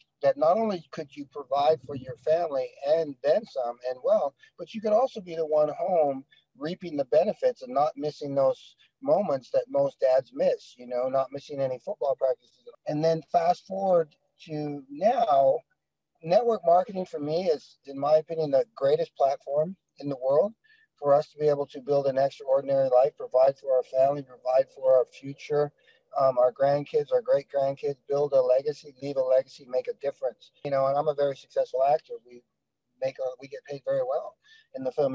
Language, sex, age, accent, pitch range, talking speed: English, male, 50-69, American, 135-200 Hz, 190 wpm